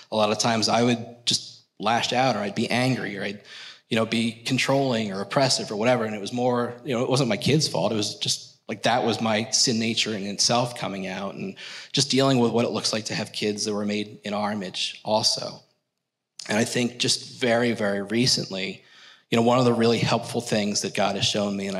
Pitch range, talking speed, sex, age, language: 105-120 Hz, 235 wpm, male, 30-49, English